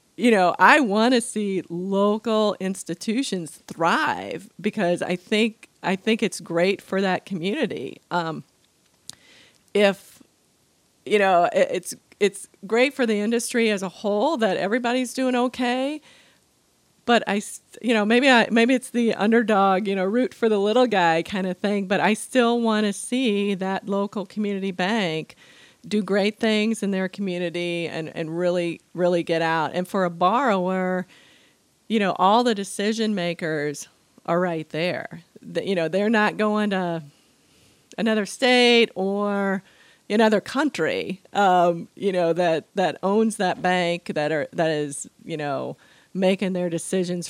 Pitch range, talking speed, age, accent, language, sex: 175-220 Hz, 155 wpm, 40-59, American, English, female